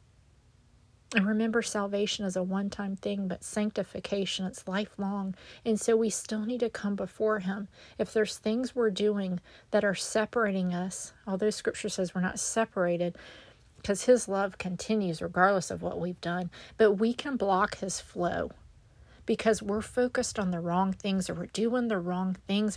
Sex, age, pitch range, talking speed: female, 40-59, 185-225 Hz, 165 wpm